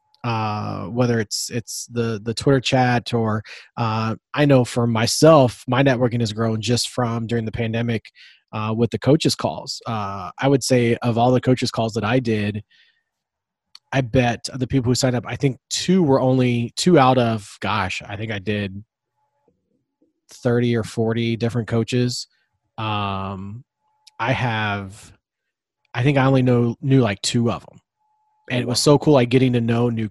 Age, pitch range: 30-49, 110-130 Hz